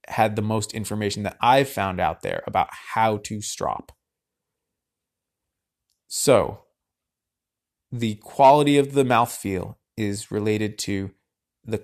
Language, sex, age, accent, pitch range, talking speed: English, male, 30-49, American, 100-115 Hz, 115 wpm